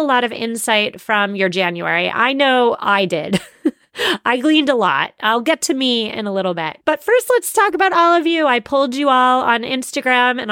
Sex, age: female, 30-49